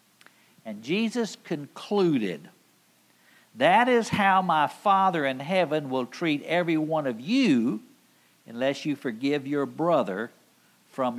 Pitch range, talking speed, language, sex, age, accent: 145-215 Hz, 120 wpm, English, male, 60-79, American